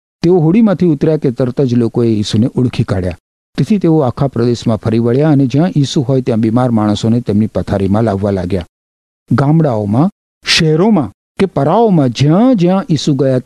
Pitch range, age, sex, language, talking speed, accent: 95-145 Hz, 50-69, male, Gujarati, 155 wpm, native